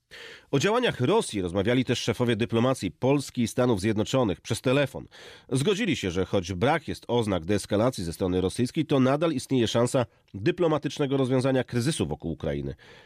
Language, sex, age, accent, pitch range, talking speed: Polish, male, 40-59, native, 100-130 Hz, 150 wpm